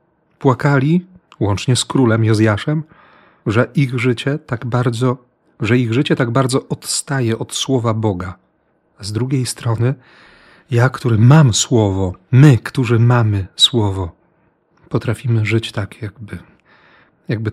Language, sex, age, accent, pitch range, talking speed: Polish, male, 40-59, native, 105-130 Hz, 110 wpm